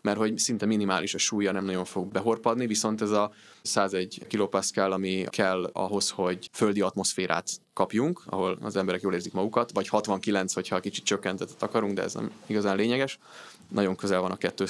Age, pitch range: 20-39, 95-110 Hz